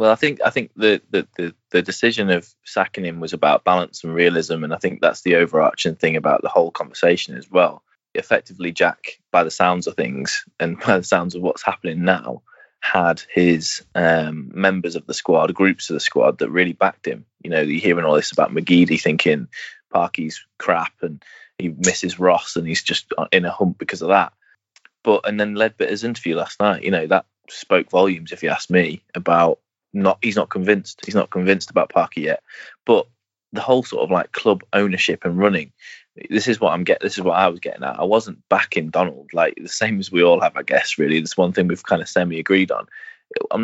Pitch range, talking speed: 85-100 Hz, 215 wpm